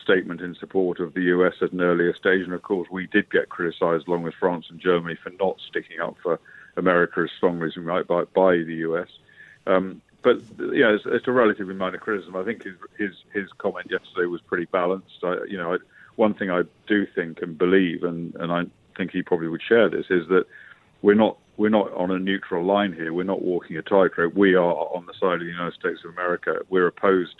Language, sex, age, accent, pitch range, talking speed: English, male, 50-69, British, 85-95 Hz, 235 wpm